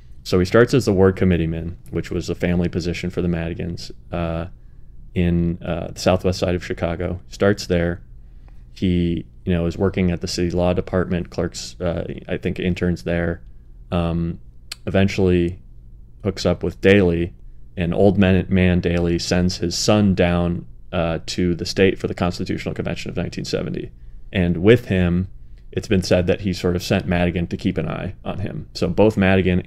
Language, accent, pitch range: English, American, 85-95 Hz